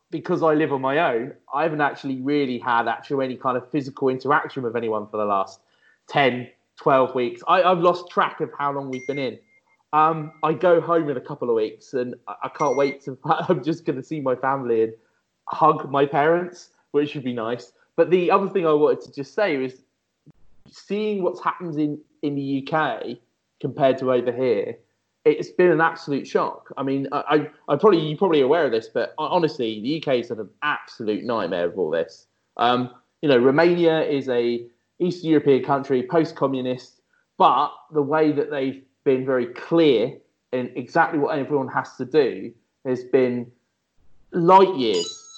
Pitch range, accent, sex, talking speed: 125-170 Hz, British, male, 190 wpm